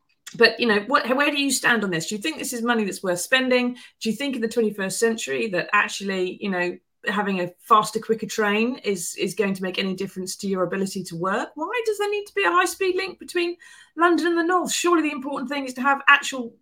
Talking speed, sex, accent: 250 wpm, female, British